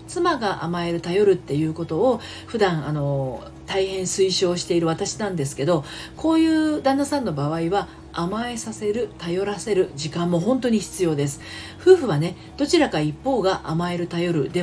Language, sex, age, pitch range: Japanese, female, 40-59, 155-245 Hz